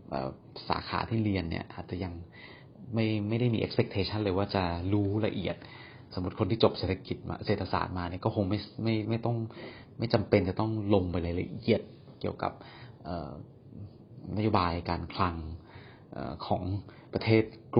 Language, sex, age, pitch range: Thai, male, 30-49, 90-115 Hz